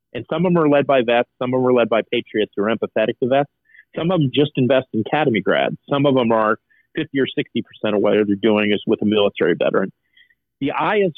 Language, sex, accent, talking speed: English, male, American, 250 wpm